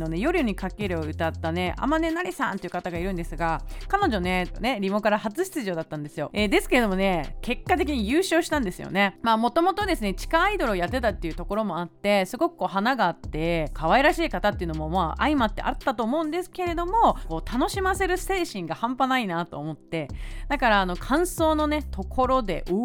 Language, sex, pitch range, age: Japanese, female, 180-300 Hz, 30-49